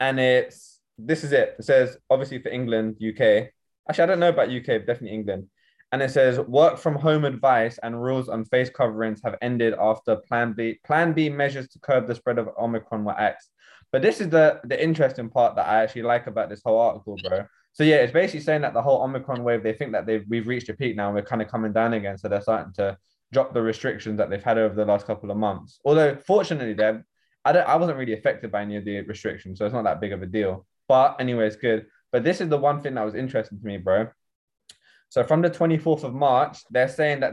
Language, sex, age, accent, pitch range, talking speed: English, male, 20-39, British, 110-140 Hz, 245 wpm